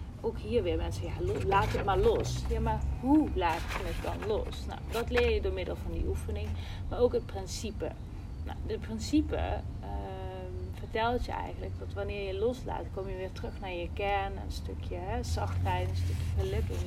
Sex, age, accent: female, 30-49, Dutch